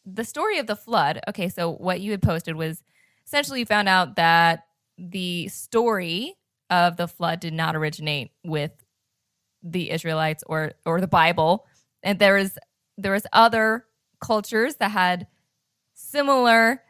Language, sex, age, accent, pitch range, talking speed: English, female, 10-29, American, 170-225 Hz, 150 wpm